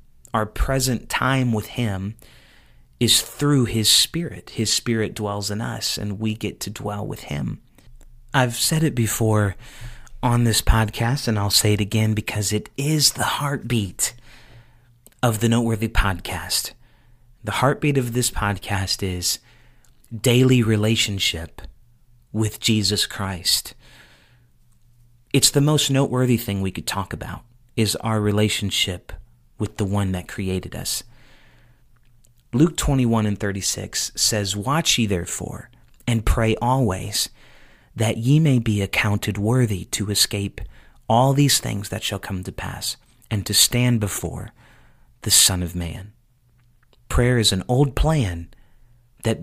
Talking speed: 135 wpm